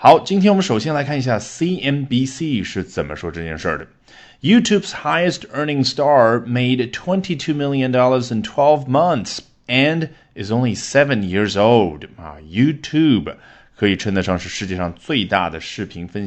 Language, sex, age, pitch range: Chinese, male, 30-49, 95-145 Hz